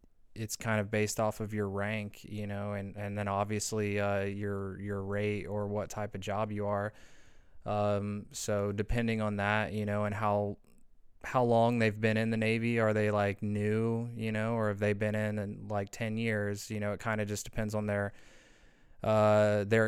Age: 20-39